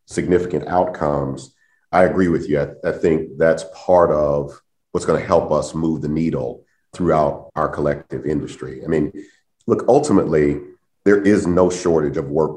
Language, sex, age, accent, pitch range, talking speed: English, male, 40-59, American, 75-90 Hz, 160 wpm